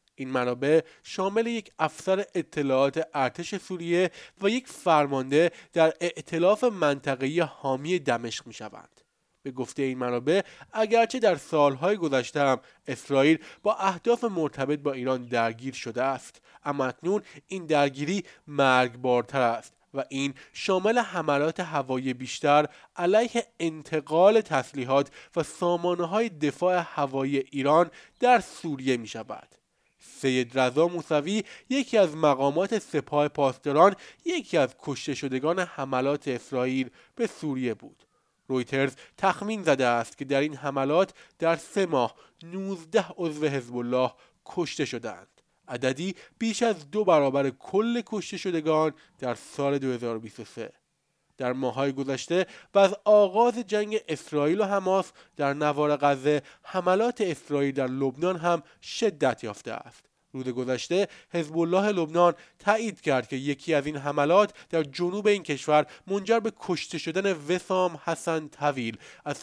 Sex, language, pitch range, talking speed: male, Persian, 135-185 Hz, 130 wpm